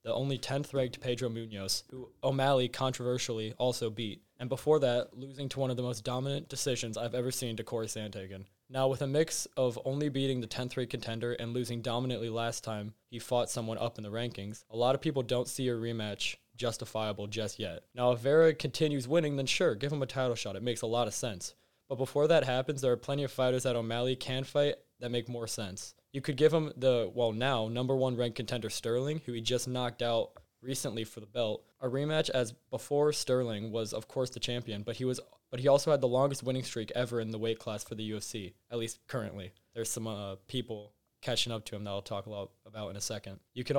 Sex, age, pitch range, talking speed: male, 20-39, 110-130 Hz, 230 wpm